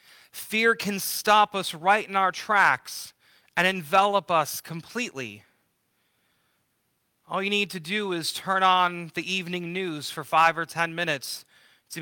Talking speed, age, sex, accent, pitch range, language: 145 wpm, 30-49, male, American, 155-200 Hz, English